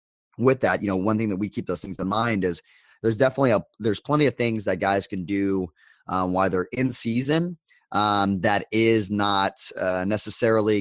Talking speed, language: 200 wpm, English